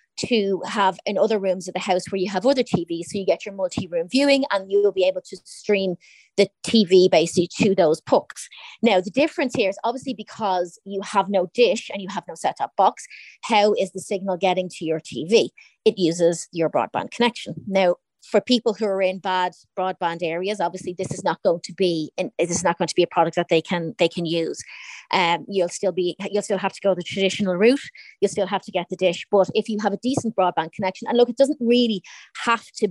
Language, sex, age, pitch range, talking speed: English, female, 30-49, 175-215 Hz, 230 wpm